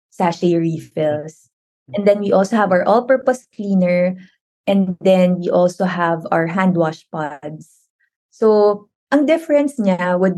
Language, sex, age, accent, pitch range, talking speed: Filipino, female, 20-39, native, 175-225 Hz, 140 wpm